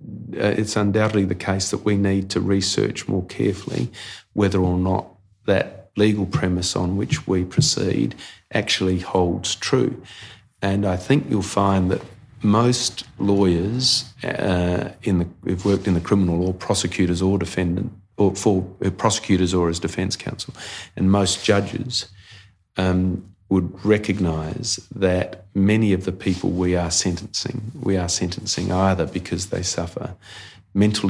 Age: 40-59